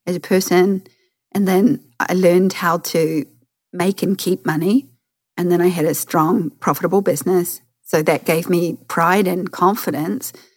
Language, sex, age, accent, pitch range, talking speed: English, female, 40-59, Australian, 165-190 Hz, 160 wpm